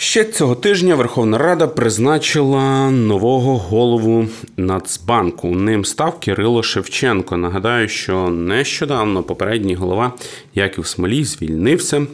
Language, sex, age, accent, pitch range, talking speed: Ukrainian, male, 30-49, native, 95-120 Hz, 110 wpm